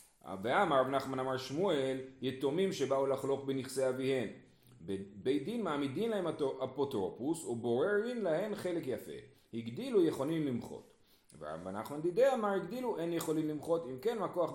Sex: male